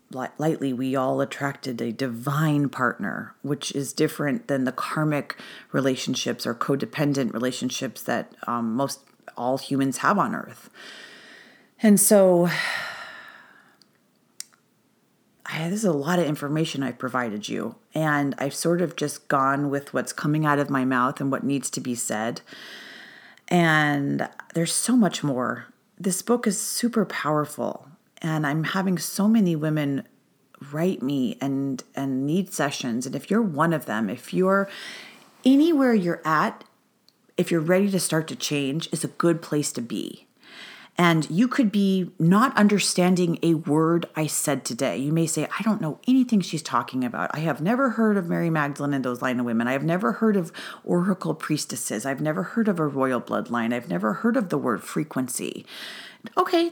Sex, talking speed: female, 165 wpm